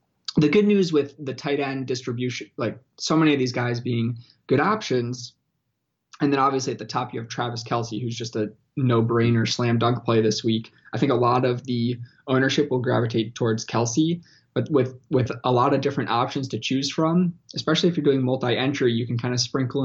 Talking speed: 205 wpm